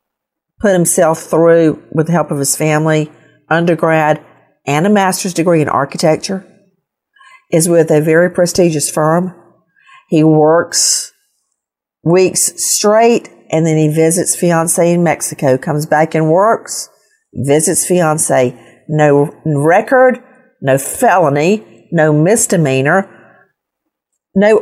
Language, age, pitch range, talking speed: English, 50-69, 160-220 Hz, 110 wpm